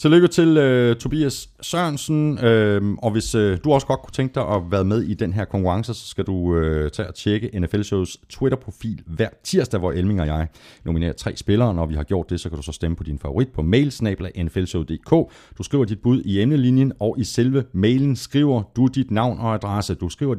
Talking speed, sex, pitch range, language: 220 wpm, male, 85-120 Hz, Danish